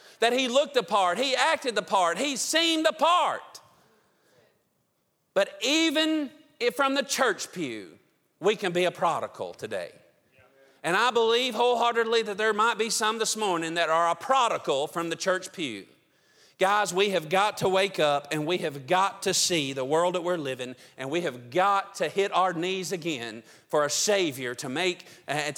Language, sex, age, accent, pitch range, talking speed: English, male, 40-59, American, 155-205 Hz, 185 wpm